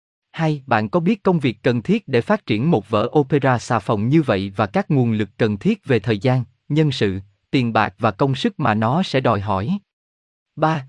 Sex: male